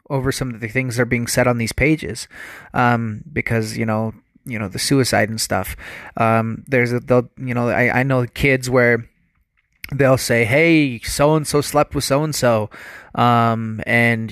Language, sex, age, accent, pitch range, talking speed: English, male, 30-49, American, 115-150 Hz, 175 wpm